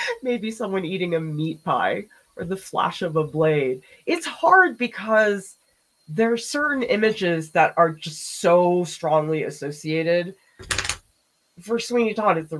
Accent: American